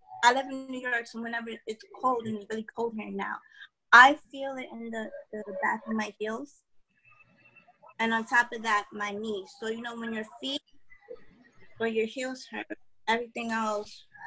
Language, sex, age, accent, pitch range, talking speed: English, female, 20-39, American, 205-275 Hz, 185 wpm